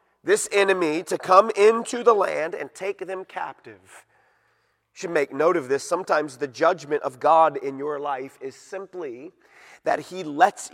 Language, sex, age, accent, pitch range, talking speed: English, male, 30-49, American, 175-270 Hz, 170 wpm